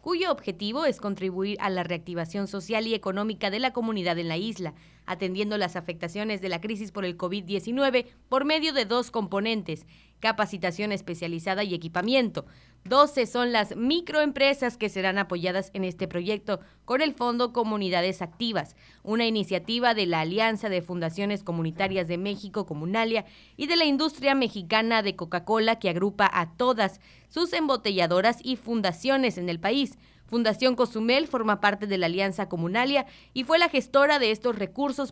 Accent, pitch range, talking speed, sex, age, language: Mexican, 190-245 Hz, 160 wpm, female, 30-49, Spanish